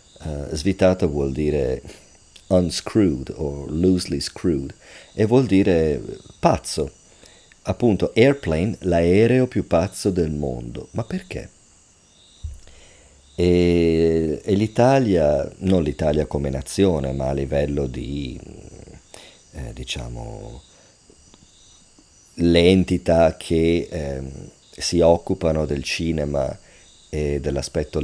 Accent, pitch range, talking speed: Italian, 75-90 Hz, 95 wpm